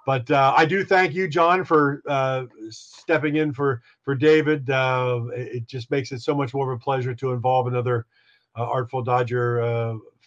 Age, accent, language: 50-69, American, English